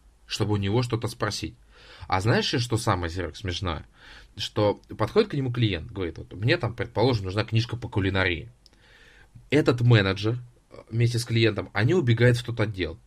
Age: 20-39